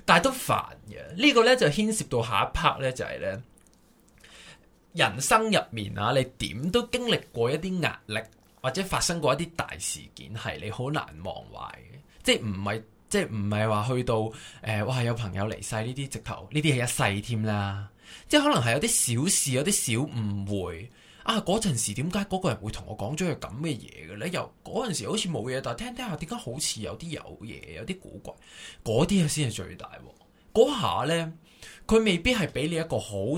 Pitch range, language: 105-160 Hz, Chinese